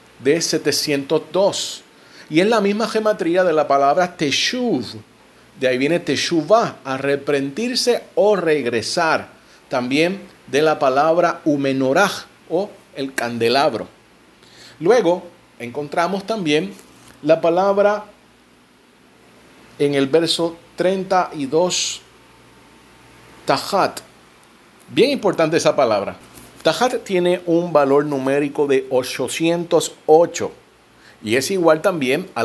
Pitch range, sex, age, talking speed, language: 135-185 Hz, male, 40-59, 95 wpm, Spanish